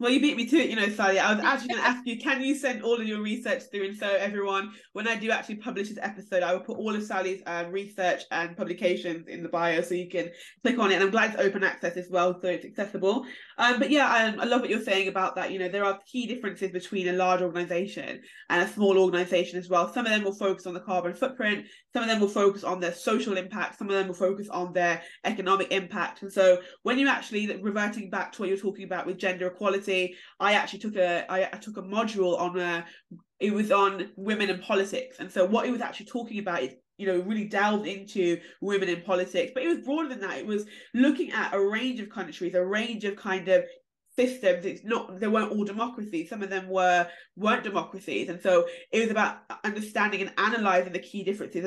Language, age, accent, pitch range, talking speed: English, 20-39, British, 185-220 Hz, 245 wpm